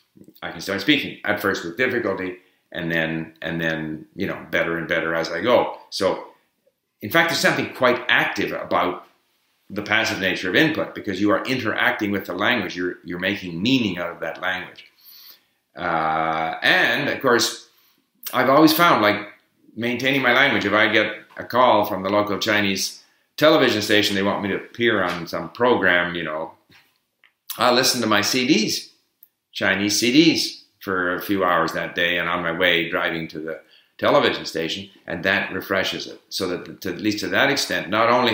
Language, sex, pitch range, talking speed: English, male, 85-110 Hz, 180 wpm